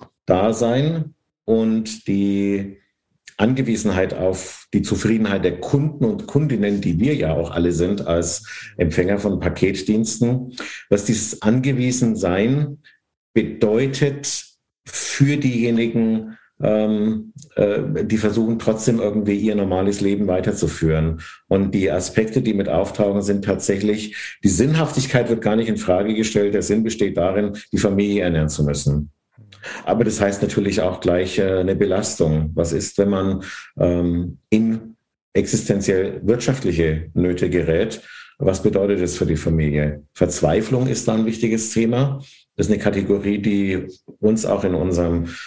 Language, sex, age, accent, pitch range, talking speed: German, male, 50-69, German, 90-110 Hz, 135 wpm